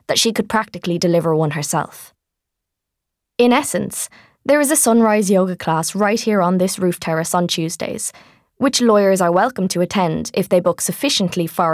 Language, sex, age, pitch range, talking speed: English, female, 20-39, 165-210 Hz, 175 wpm